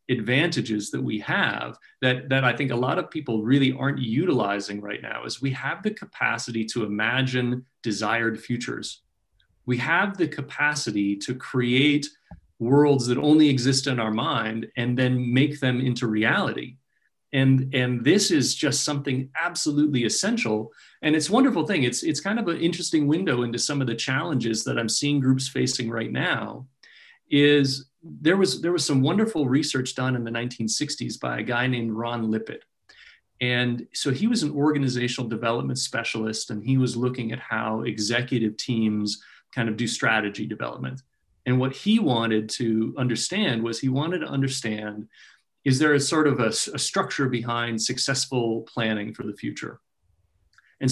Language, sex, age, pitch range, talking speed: English, male, 30-49, 115-145 Hz, 165 wpm